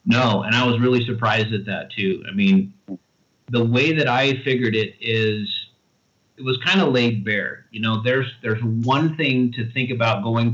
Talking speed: 195 wpm